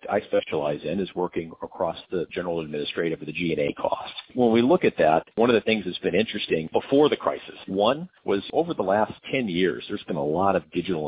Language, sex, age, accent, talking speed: English, male, 50-69, American, 220 wpm